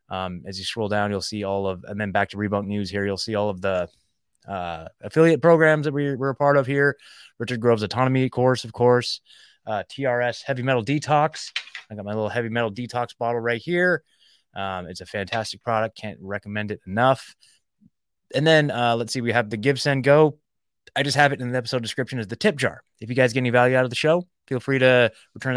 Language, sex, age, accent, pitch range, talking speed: English, male, 20-39, American, 105-140 Hz, 230 wpm